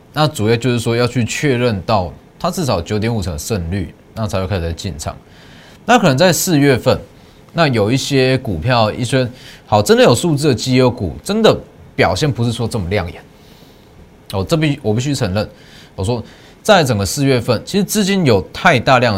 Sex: male